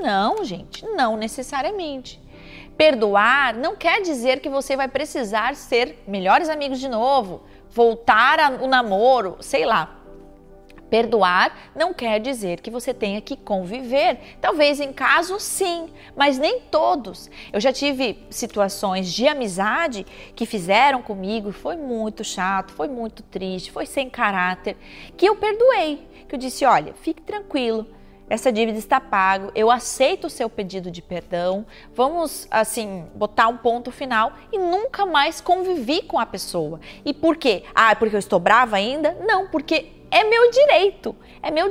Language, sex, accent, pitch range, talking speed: Portuguese, female, Brazilian, 215-310 Hz, 150 wpm